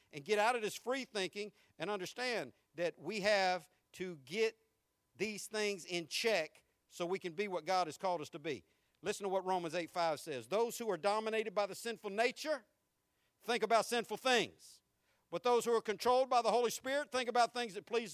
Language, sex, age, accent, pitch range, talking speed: English, male, 50-69, American, 190-315 Hz, 205 wpm